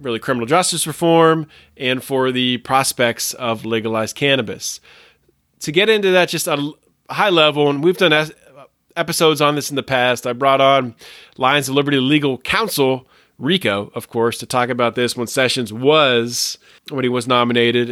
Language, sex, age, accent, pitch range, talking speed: English, male, 20-39, American, 125-160 Hz, 165 wpm